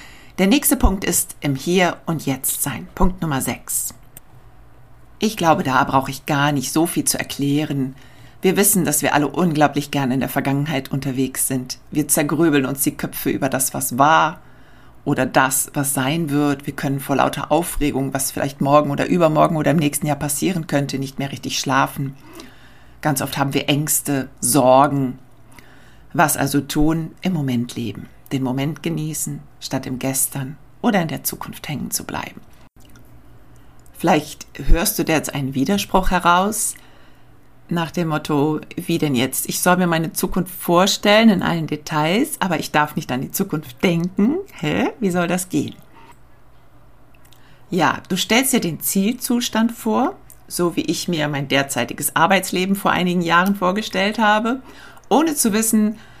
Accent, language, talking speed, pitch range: German, German, 160 wpm, 135-180 Hz